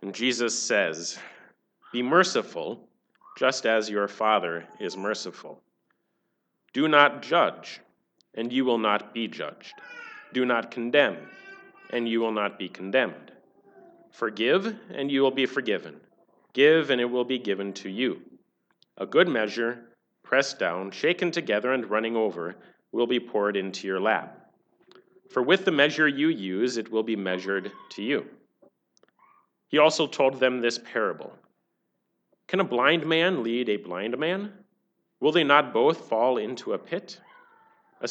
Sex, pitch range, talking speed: male, 110-160 Hz, 150 wpm